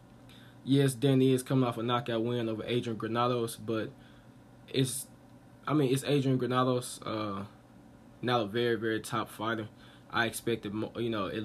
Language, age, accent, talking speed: English, 20-39, American, 155 wpm